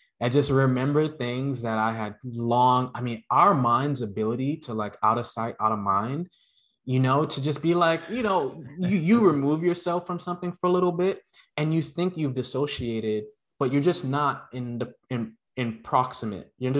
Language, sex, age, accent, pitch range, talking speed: English, male, 20-39, American, 120-150 Hz, 195 wpm